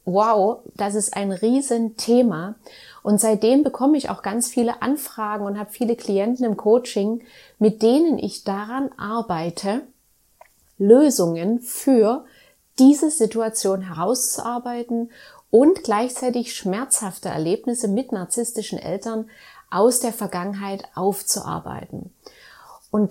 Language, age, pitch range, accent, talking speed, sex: German, 30-49, 205-250 Hz, German, 105 wpm, female